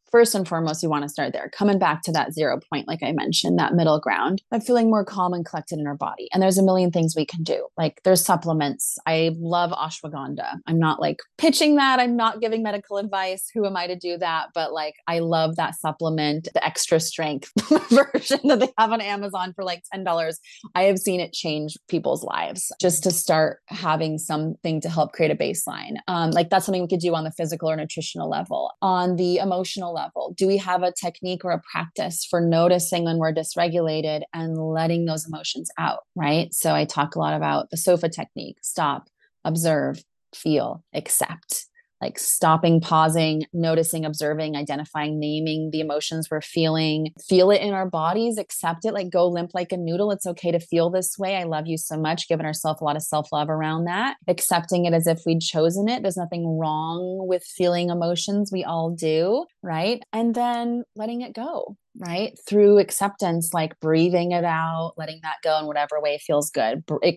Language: English